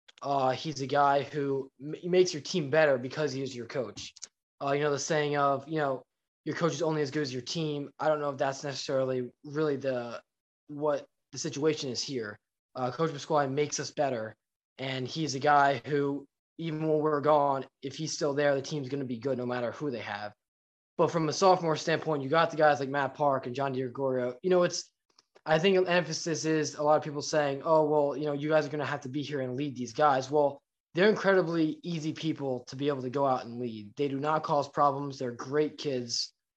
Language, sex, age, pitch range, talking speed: English, male, 20-39, 130-155 Hz, 230 wpm